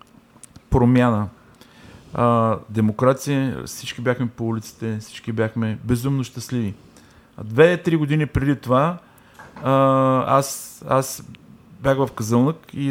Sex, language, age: male, Bulgarian, 40-59